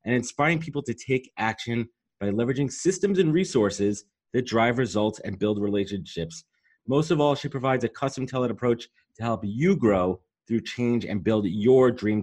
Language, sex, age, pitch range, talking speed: English, male, 30-49, 100-130 Hz, 175 wpm